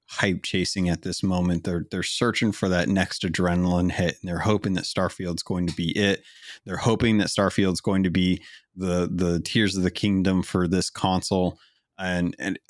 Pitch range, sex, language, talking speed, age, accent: 90-110 Hz, male, English, 190 wpm, 30-49, American